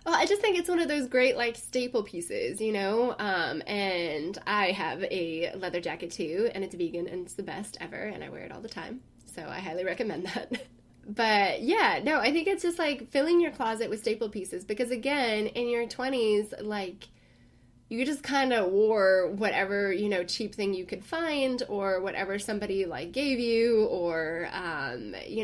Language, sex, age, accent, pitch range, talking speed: English, female, 20-39, American, 185-240 Hz, 200 wpm